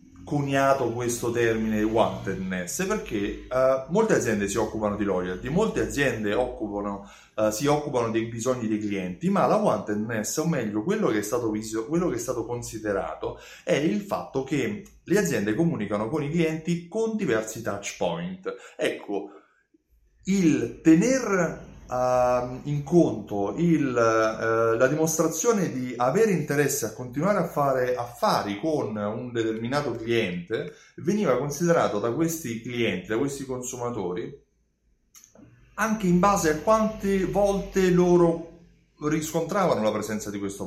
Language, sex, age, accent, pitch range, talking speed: Italian, male, 30-49, native, 110-175 Hz, 135 wpm